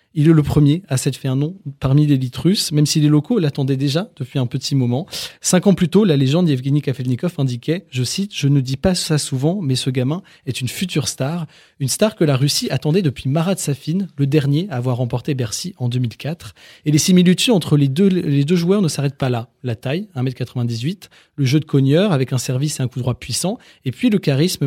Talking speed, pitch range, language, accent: 230 wpm, 135-170 Hz, French, French